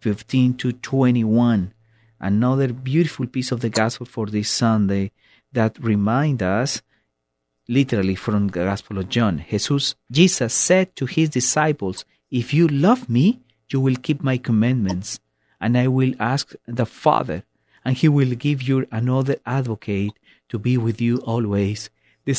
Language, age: English, 40-59